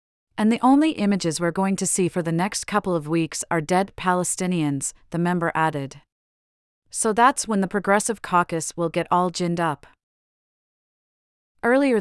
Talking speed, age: 160 wpm, 30-49